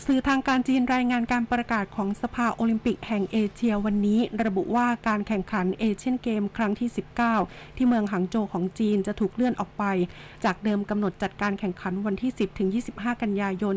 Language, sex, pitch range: Thai, female, 195-230 Hz